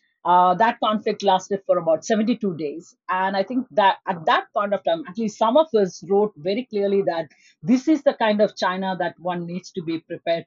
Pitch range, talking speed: 165-210 Hz, 220 wpm